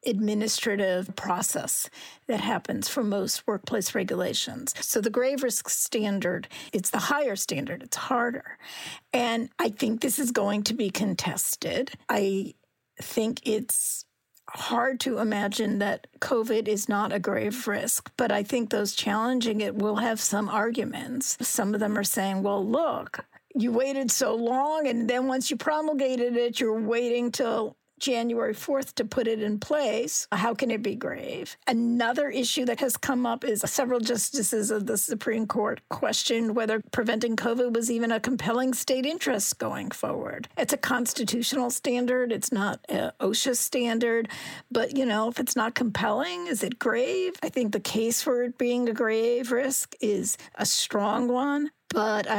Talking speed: 165 wpm